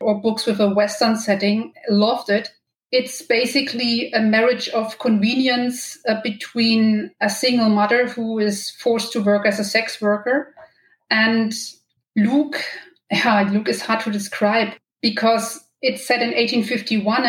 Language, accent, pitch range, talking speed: English, German, 210-235 Hz, 140 wpm